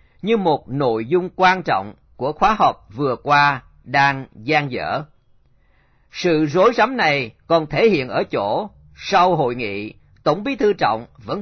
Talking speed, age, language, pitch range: 165 wpm, 40-59, Vietnamese, 125-180 Hz